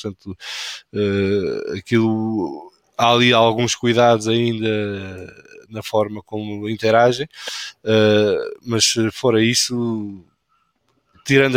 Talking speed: 90 wpm